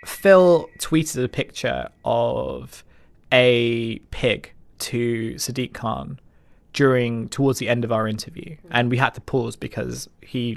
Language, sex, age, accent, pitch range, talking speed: English, male, 20-39, British, 120-140 Hz, 135 wpm